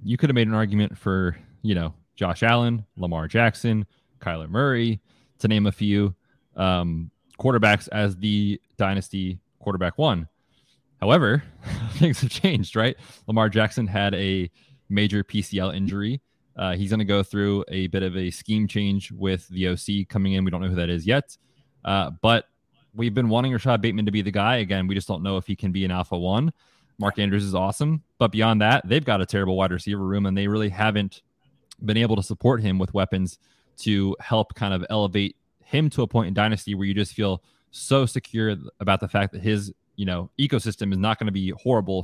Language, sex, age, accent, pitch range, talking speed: English, male, 20-39, American, 95-115 Hz, 200 wpm